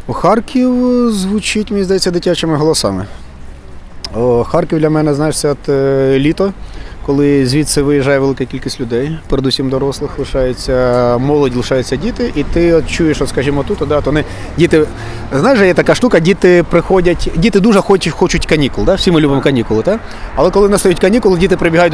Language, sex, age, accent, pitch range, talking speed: Ukrainian, male, 30-49, native, 145-185 Hz, 155 wpm